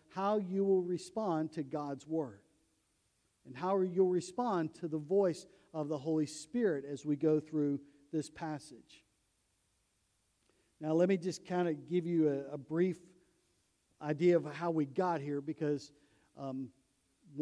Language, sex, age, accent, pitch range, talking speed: English, male, 50-69, American, 145-175 Hz, 150 wpm